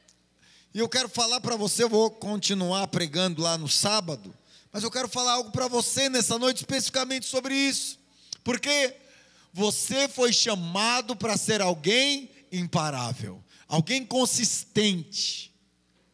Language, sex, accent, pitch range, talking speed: Portuguese, male, Brazilian, 175-260 Hz, 130 wpm